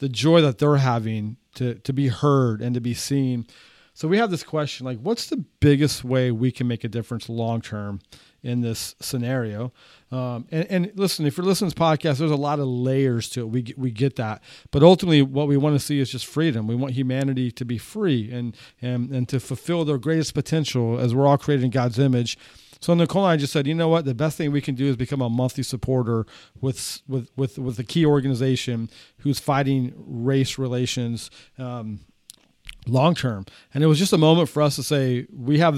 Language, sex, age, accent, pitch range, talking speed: English, male, 40-59, American, 125-155 Hz, 220 wpm